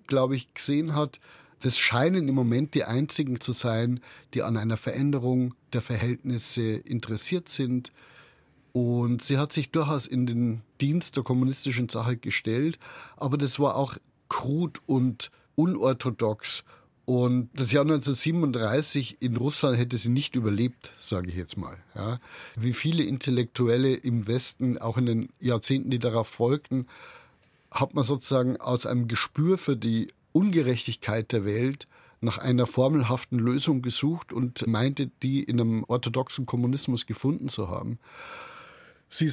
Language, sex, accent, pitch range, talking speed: German, male, German, 115-140 Hz, 140 wpm